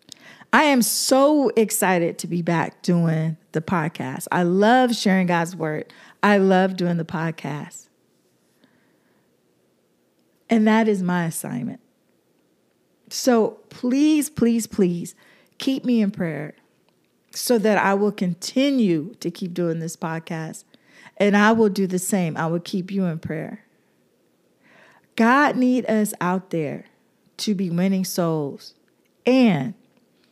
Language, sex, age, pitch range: English, female, 40-59, 170-225 Hz